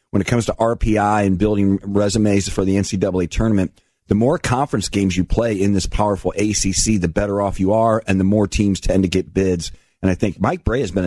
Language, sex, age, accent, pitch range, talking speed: English, male, 40-59, American, 95-110 Hz, 230 wpm